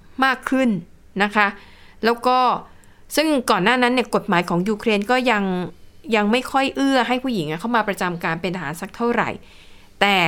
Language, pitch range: Thai, 185-235 Hz